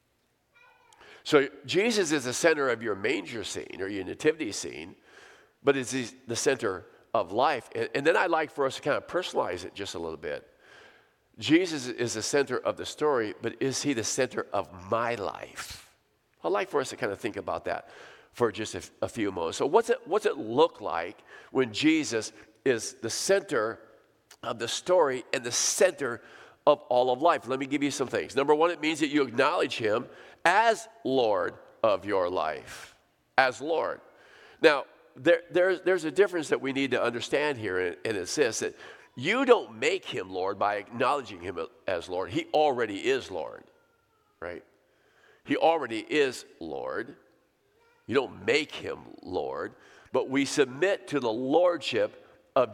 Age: 50-69